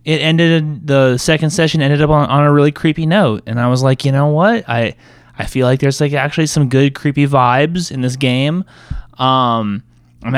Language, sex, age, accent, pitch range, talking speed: English, male, 20-39, American, 120-145 Hz, 200 wpm